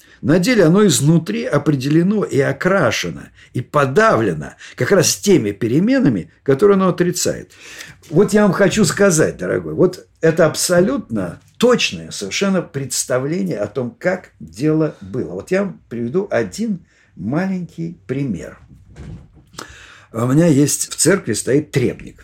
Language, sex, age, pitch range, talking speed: Russian, male, 50-69, 140-180 Hz, 125 wpm